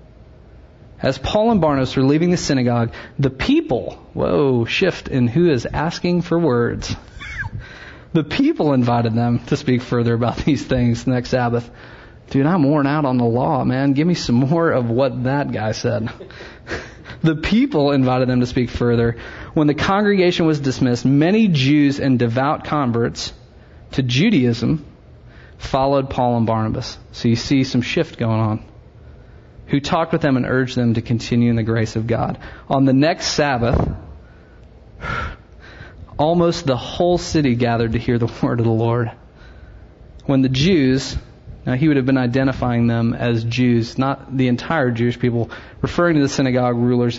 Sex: male